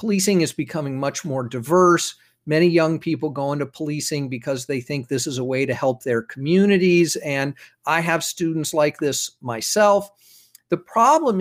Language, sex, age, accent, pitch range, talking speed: English, male, 50-69, American, 150-195 Hz, 170 wpm